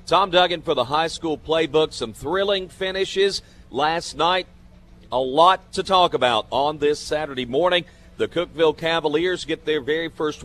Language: English